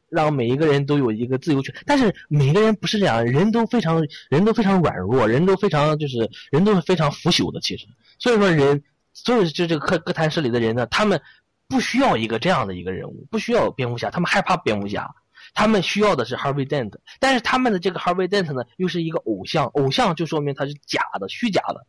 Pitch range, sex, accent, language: 130-205 Hz, male, native, Chinese